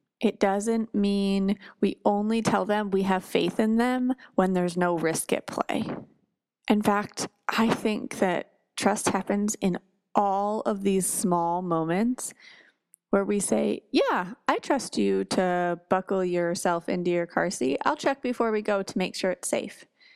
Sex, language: female, English